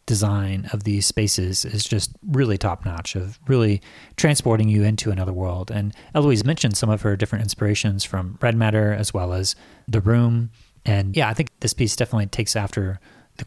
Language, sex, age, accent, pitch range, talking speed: English, male, 30-49, American, 100-120 Hz, 185 wpm